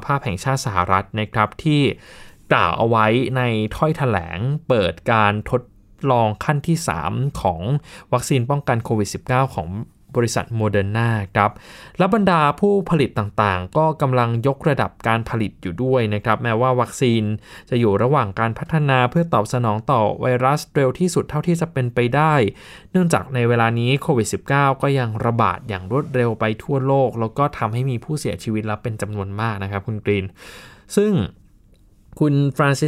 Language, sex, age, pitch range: Thai, male, 20-39, 110-145 Hz